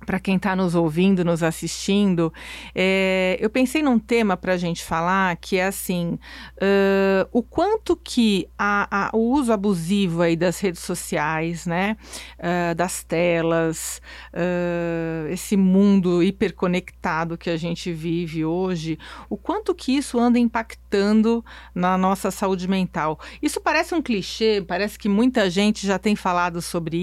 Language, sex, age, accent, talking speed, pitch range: Portuguese, female, 40-59, Brazilian, 135 wpm, 175-230 Hz